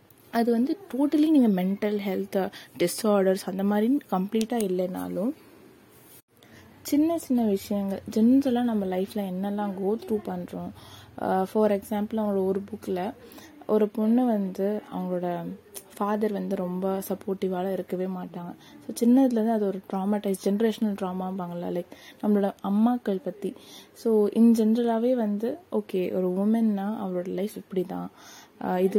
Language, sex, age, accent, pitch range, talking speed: Tamil, female, 20-39, native, 185-220 Hz, 120 wpm